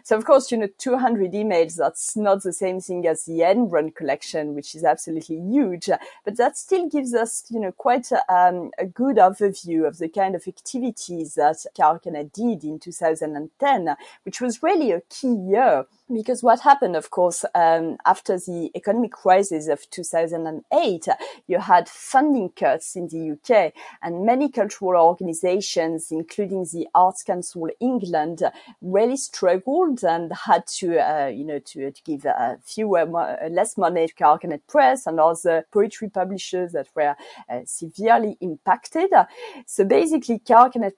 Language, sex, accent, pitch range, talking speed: English, female, French, 165-235 Hz, 160 wpm